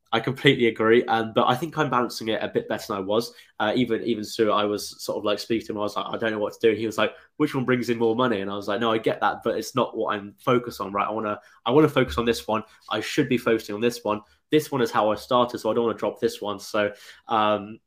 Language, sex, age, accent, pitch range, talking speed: English, male, 10-29, British, 105-115 Hz, 320 wpm